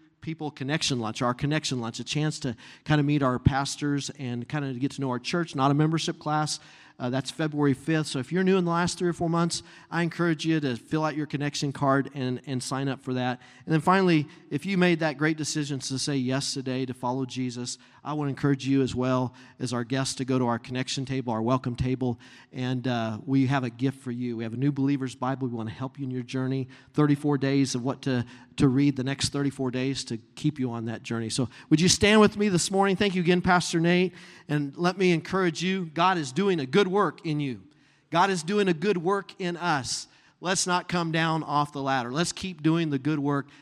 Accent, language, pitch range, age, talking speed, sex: American, English, 130-165 Hz, 40-59, 240 wpm, male